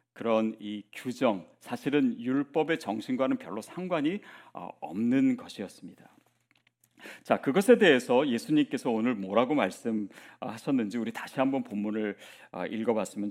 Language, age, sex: Korean, 40-59, male